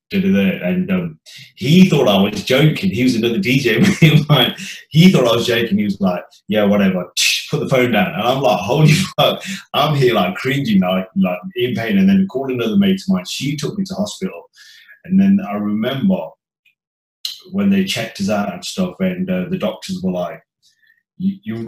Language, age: English, 30-49